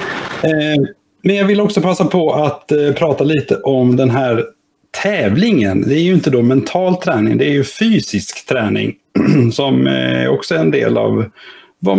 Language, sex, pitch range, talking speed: Swedish, male, 115-155 Hz, 160 wpm